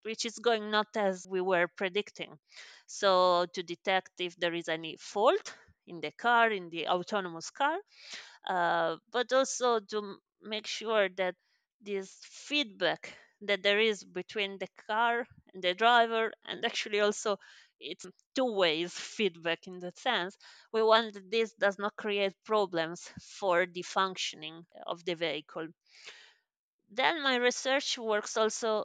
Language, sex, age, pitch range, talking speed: English, female, 30-49, 185-225 Hz, 145 wpm